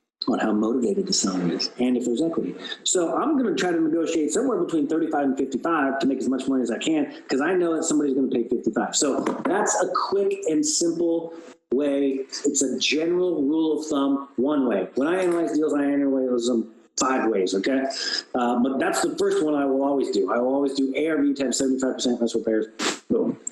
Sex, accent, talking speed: male, American, 210 wpm